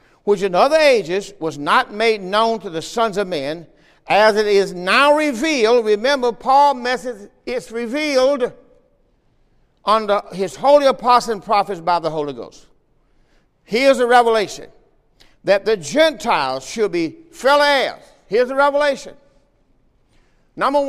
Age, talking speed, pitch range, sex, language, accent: 60-79, 135 wpm, 225-285 Hz, male, English, American